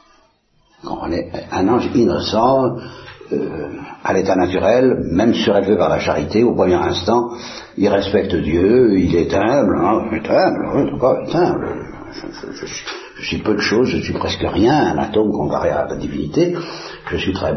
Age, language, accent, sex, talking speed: 60-79, Italian, French, male, 180 wpm